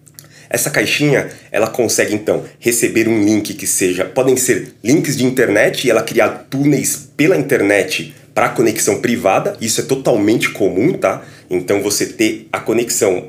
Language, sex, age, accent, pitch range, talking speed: Portuguese, male, 30-49, Brazilian, 135-195 Hz, 155 wpm